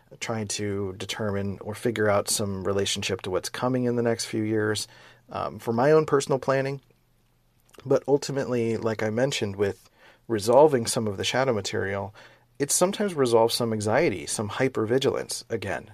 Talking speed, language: 160 wpm, English